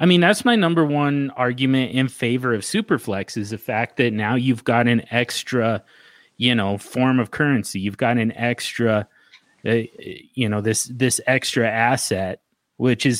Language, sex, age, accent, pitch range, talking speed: English, male, 30-49, American, 105-130 Hz, 175 wpm